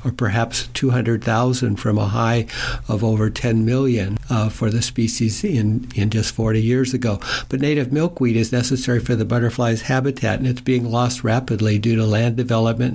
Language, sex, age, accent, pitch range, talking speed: English, male, 60-79, American, 110-125 Hz, 175 wpm